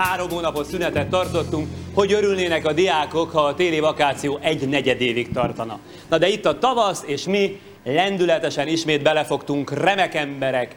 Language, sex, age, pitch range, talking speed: Hungarian, male, 30-49, 135-175 Hz, 155 wpm